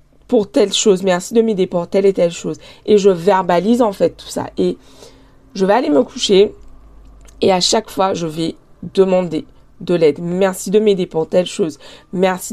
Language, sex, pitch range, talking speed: French, female, 175-220 Hz, 190 wpm